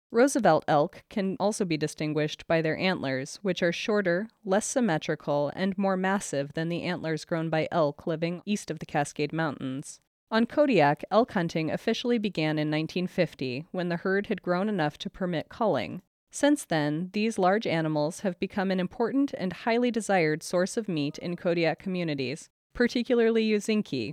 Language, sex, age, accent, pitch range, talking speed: English, female, 20-39, American, 160-220 Hz, 165 wpm